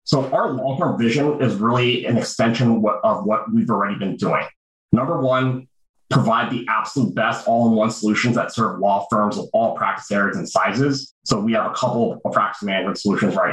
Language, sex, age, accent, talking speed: English, male, 30-49, American, 185 wpm